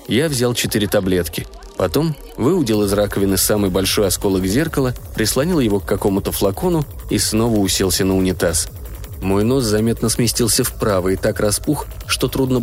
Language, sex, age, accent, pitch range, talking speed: Russian, male, 20-39, native, 95-120 Hz, 150 wpm